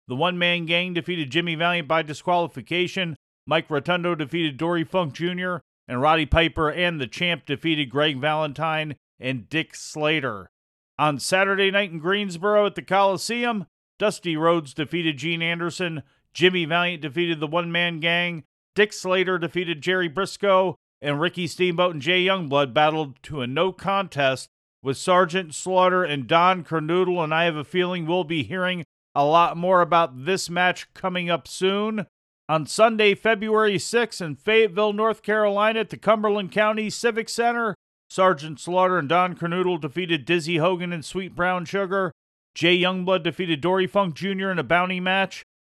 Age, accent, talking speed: 40-59, American, 160 wpm